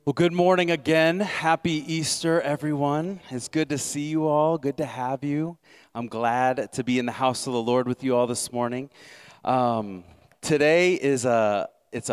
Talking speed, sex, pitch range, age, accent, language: 185 wpm, male, 105-145 Hz, 30-49, American, English